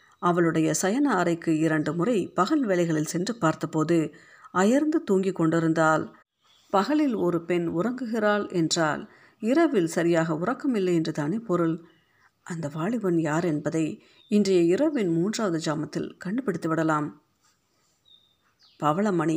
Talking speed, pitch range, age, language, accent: 100 wpm, 160-195 Hz, 50-69, Tamil, native